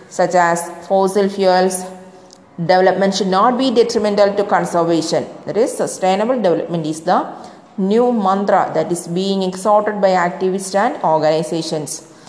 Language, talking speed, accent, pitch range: English, 130 wpm, Indian, 175-215 Hz